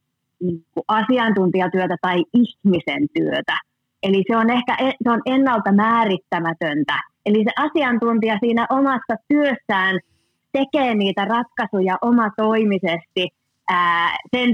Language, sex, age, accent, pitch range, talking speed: Finnish, female, 30-49, native, 180-245 Hz, 105 wpm